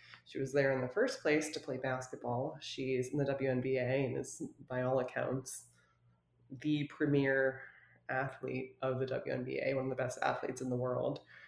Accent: American